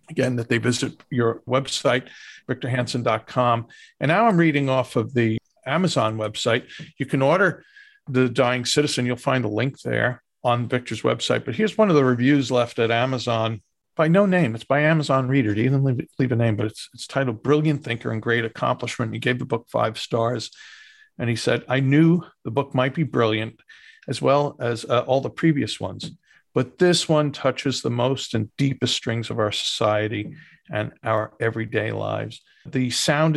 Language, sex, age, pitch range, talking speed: English, male, 50-69, 115-140 Hz, 185 wpm